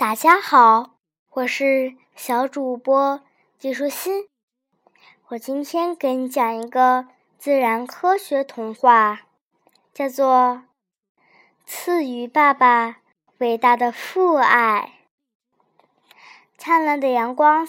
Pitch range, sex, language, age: 235-305 Hz, male, Chinese, 10-29